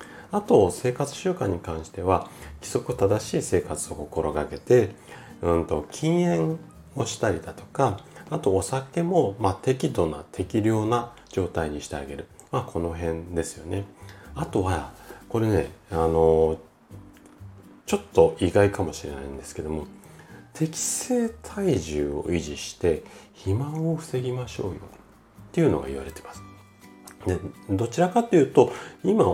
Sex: male